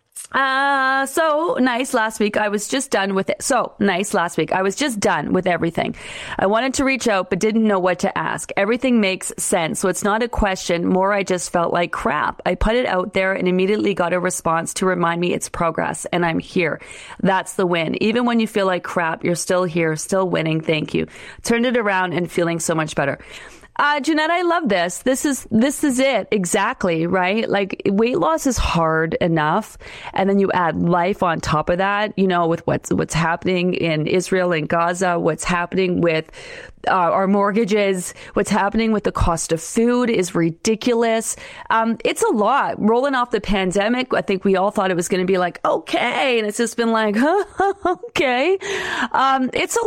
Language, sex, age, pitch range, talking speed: English, female, 40-59, 175-245 Hz, 205 wpm